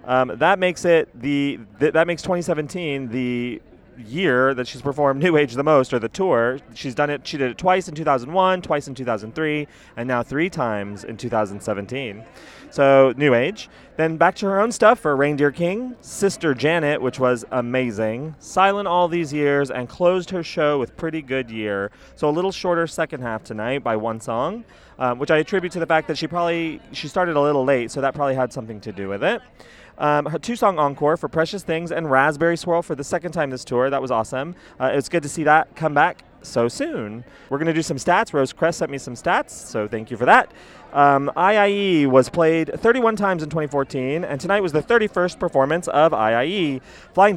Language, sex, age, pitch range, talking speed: English, male, 30-49, 135-175 Hz, 210 wpm